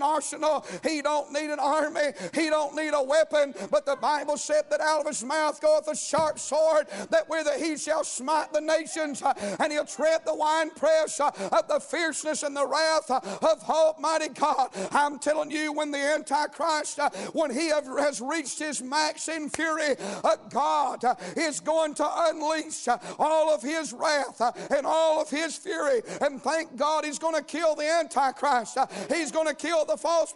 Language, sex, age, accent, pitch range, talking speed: English, male, 50-69, American, 260-315 Hz, 175 wpm